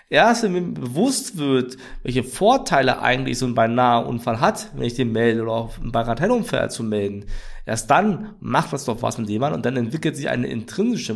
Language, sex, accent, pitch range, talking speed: German, male, German, 120-165 Hz, 195 wpm